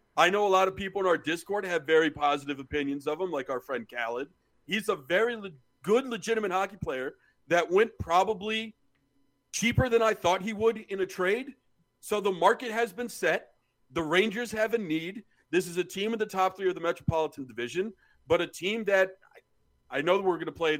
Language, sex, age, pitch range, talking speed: English, male, 40-59, 155-210 Hz, 210 wpm